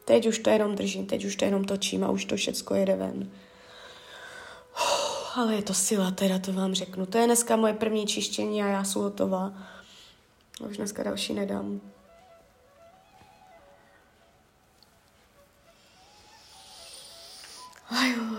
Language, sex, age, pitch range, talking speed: Czech, female, 20-39, 195-230 Hz, 130 wpm